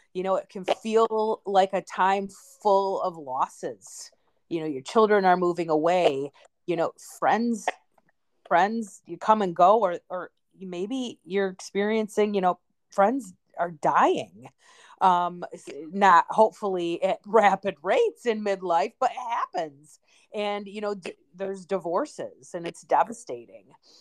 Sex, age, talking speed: female, 30-49, 140 wpm